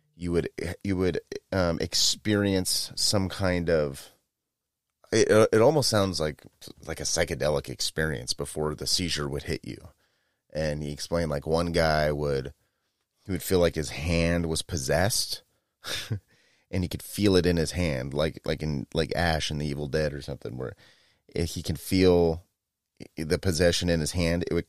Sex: male